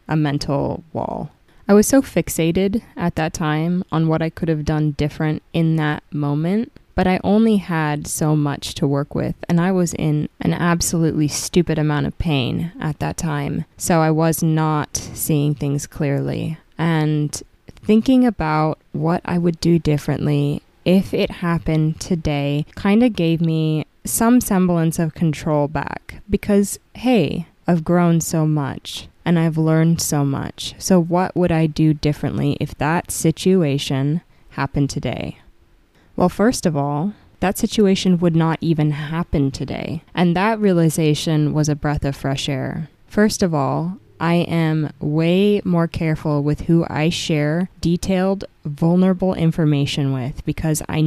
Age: 20-39